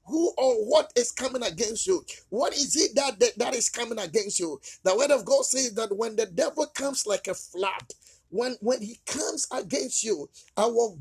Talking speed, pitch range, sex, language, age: 200 wpm, 220-305 Hz, male, English, 50-69